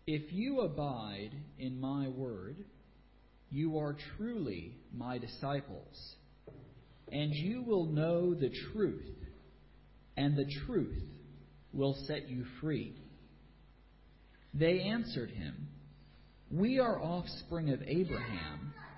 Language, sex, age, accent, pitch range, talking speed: English, male, 40-59, American, 105-165 Hz, 100 wpm